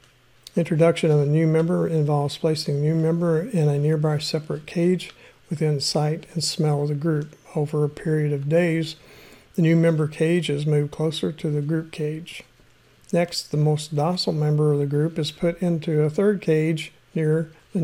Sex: male